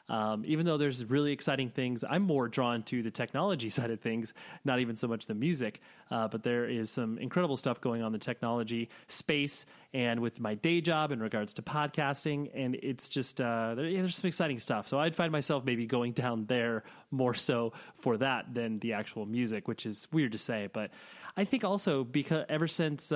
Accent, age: American, 30-49